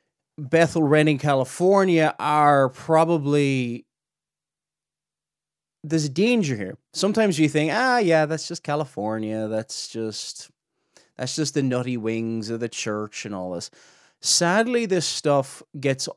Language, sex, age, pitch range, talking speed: English, male, 30-49, 135-170 Hz, 125 wpm